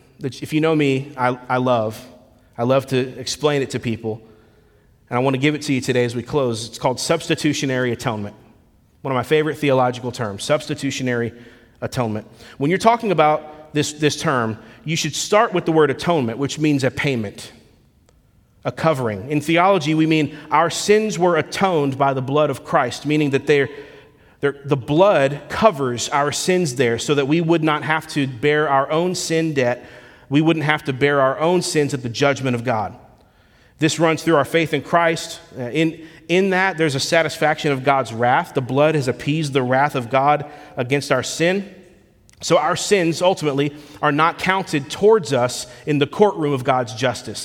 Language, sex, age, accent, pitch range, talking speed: English, male, 30-49, American, 125-160 Hz, 185 wpm